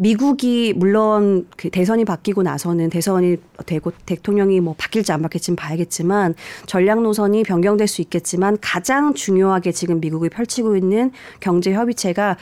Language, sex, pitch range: Korean, female, 170-215 Hz